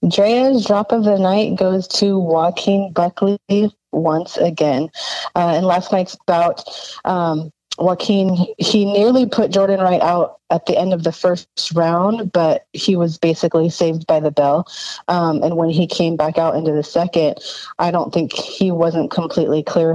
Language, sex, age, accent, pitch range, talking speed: English, female, 30-49, American, 155-185 Hz, 170 wpm